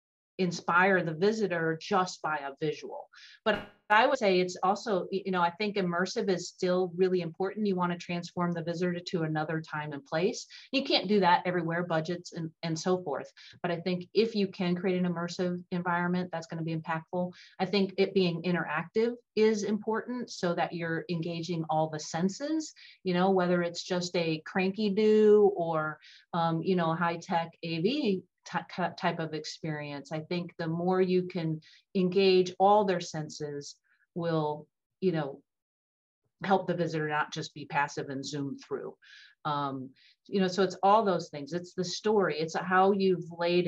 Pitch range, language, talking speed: 155-185 Hz, English, 175 wpm